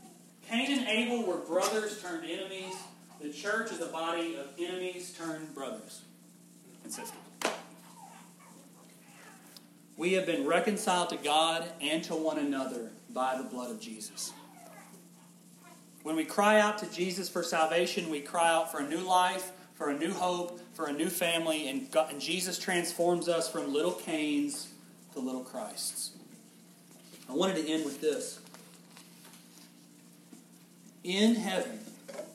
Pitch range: 140-195 Hz